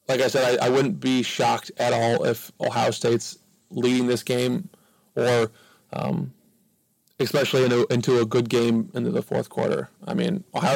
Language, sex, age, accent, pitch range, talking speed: English, male, 30-49, American, 115-130 Hz, 165 wpm